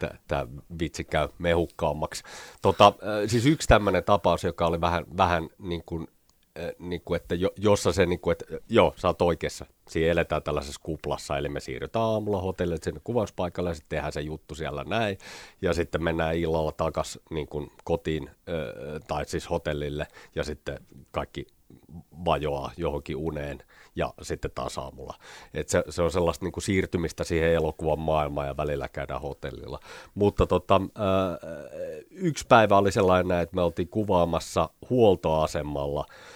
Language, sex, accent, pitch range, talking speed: Finnish, male, native, 80-95 Hz, 155 wpm